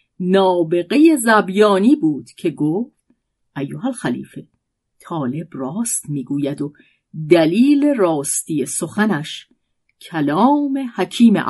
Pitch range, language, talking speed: 145-210 Hz, Persian, 85 wpm